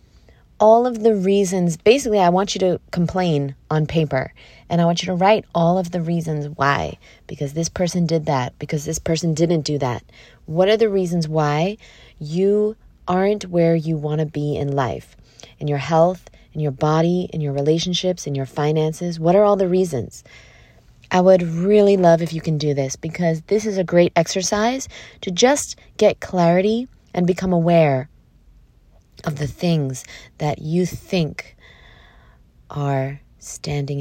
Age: 20-39